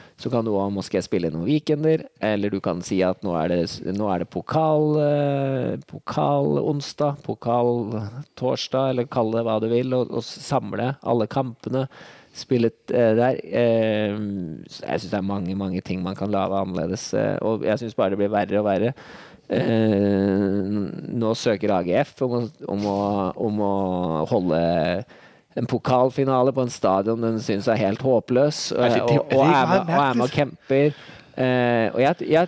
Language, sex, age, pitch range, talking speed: Danish, male, 20-39, 105-130 Hz, 165 wpm